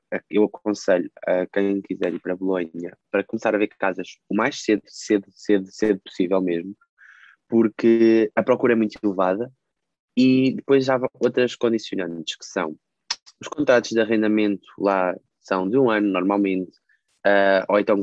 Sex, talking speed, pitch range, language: male, 155 wpm, 95-120 Hz, Portuguese